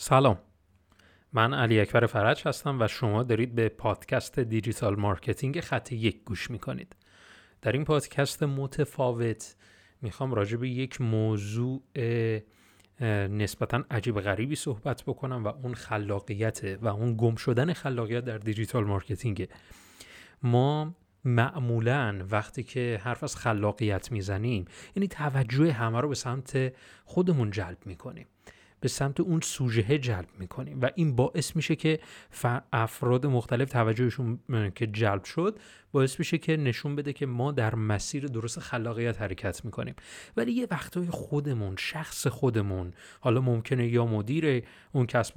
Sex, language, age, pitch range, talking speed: male, Persian, 30-49, 110-140 Hz, 140 wpm